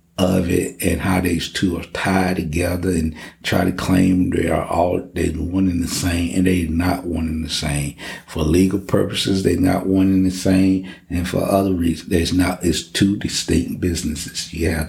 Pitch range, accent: 85-95 Hz, American